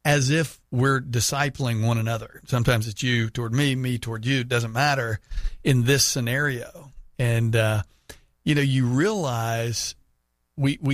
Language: English